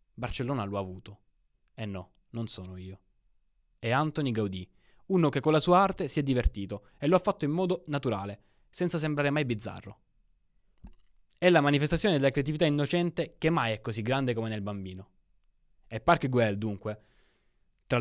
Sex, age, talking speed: male, 20-39, 175 wpm